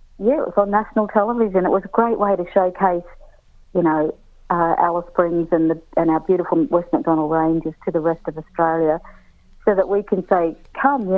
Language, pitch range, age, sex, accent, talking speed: English, 165-205 Hz, 50-69, female, Australian, 205 wpm